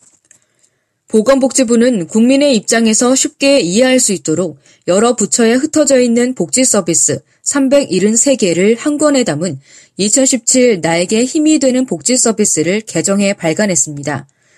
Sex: female